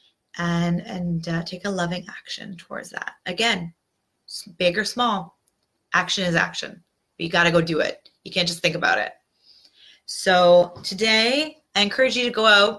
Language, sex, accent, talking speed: English, female, American, 170 wpm